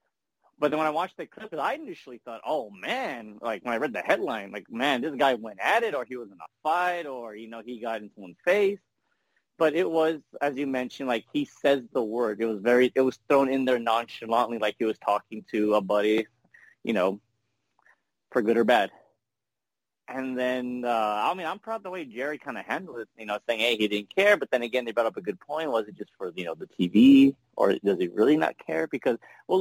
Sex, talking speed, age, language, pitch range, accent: male, 240 wpm, 30-49, English, 115-150 Hz, American